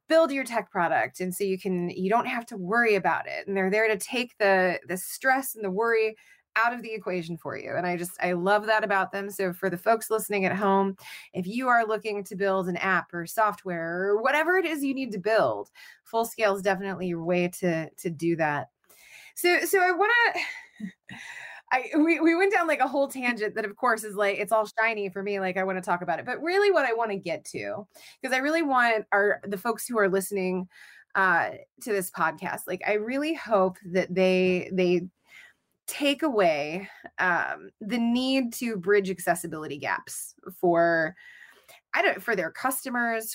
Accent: American